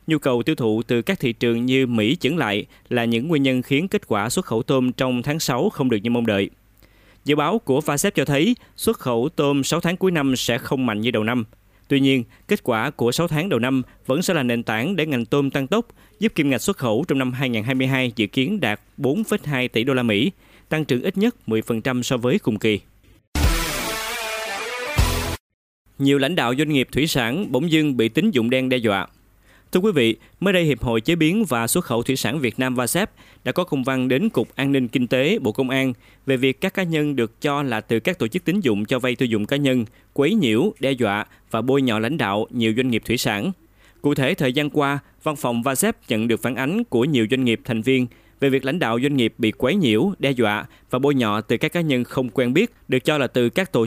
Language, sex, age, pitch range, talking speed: Vietnamese, male, 20-39, 115-145 Hz, 240 wpm